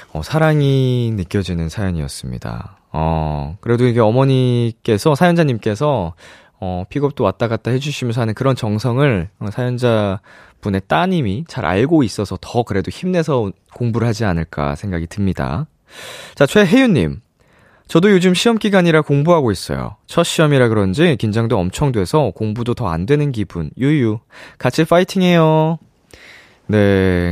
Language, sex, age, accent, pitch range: Korean, male, 20-39, native, 100-155 Hz